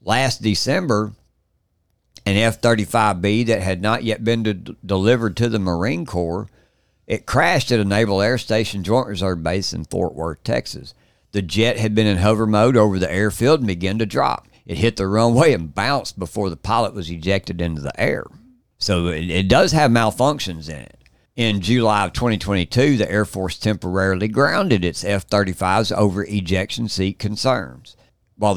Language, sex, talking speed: English, male, 170 wpm